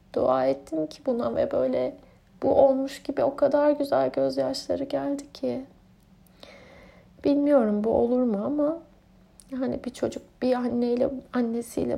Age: 30-49